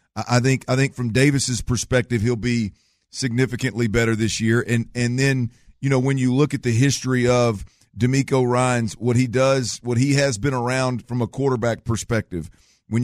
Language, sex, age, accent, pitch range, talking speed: English, male, 50-69, American, 120-135 Hz, 185 wpm